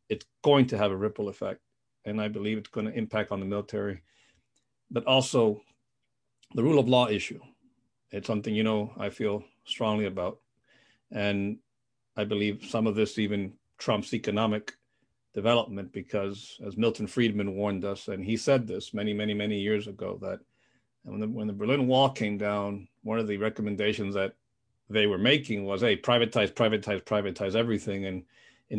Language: English